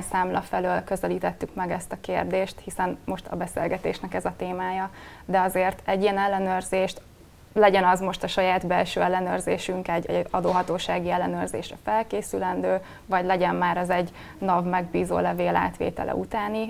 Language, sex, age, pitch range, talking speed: Hungarian, female, 20-39, 180-200 Hz, 145 wpm